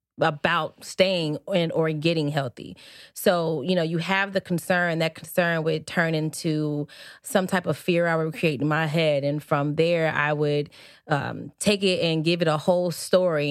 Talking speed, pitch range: 185 wpm, 155-180 Hz